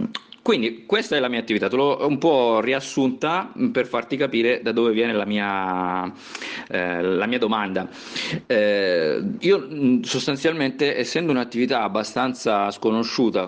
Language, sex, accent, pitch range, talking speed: Italian, male, native, 100-130 Hz, 135 wpm